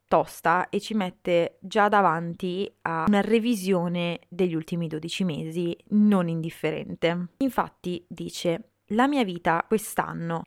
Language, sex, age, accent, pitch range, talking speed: Italian, female, 20-39, native, 170-205 Hz, 120 wpm